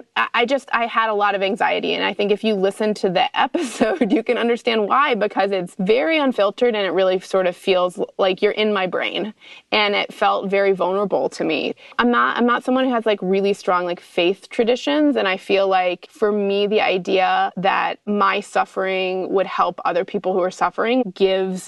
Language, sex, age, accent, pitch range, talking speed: English, female, 20-39, American, 185-215 Hz, 210 wpm